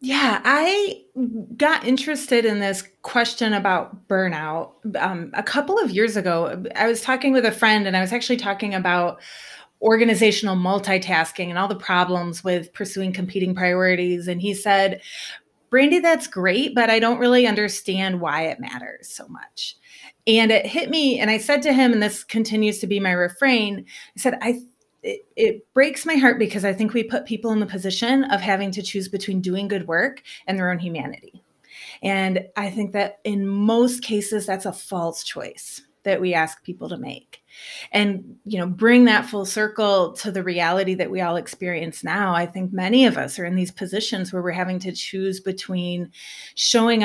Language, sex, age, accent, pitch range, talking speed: English, female, 30-49, American, 185-230 Hz, 185 wpm